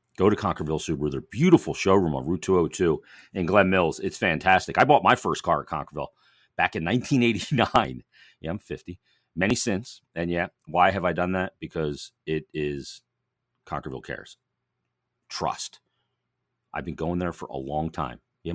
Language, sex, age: English, male, 40-59